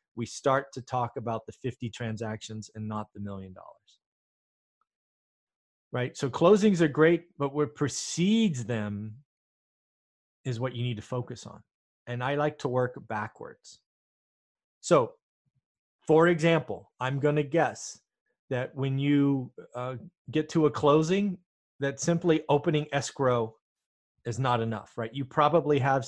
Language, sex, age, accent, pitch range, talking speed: English, male, 30-49, American, 120-155 Hz, 140 wpm